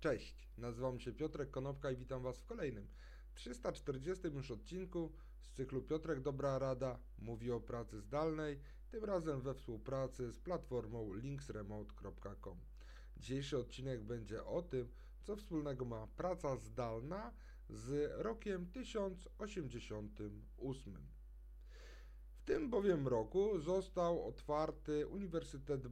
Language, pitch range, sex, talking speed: Polish, 120-165 Hz, male, 115 wpm